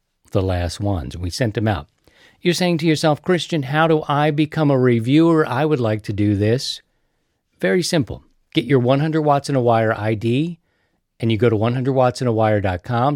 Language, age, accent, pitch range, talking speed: English, 50-69, American, 115-155 Hz, 180 wpm